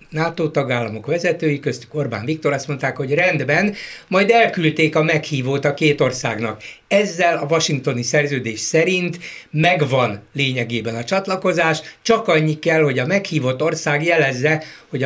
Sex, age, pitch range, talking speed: male, 60-79, 125-165 Hz, 140 wpm